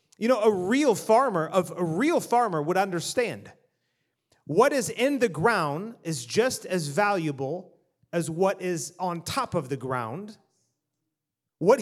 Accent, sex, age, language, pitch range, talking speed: American, male, 30-49, English, 160-220 Hz, 145 wpm